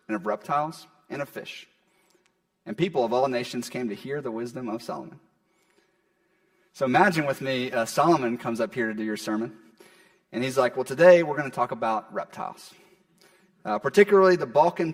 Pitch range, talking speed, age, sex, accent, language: 130-185 Hz, 175 wpm, 30-49, male, American, English